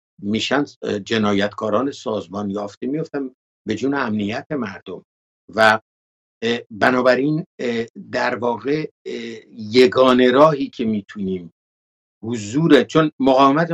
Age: 60-79